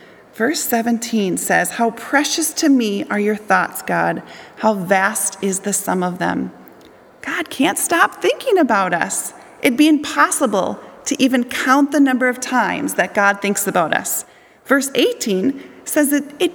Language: English